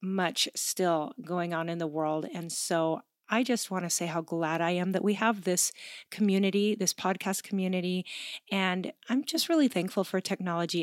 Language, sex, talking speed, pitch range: English, female, 185 wpm, 180-225 Hz